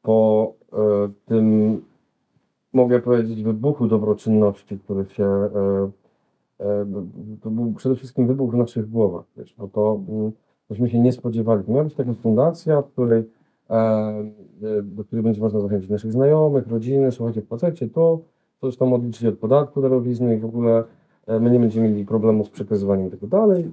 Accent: native